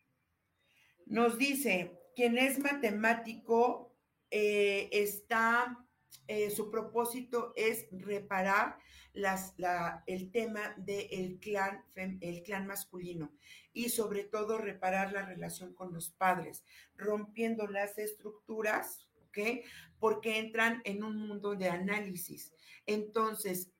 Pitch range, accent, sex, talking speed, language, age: 185-225 Hz, Mexican, female, 105 wpm, Spanish, 50-69